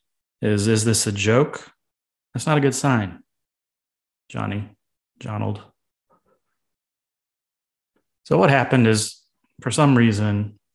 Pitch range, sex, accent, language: 105-130 Hz, male, American, English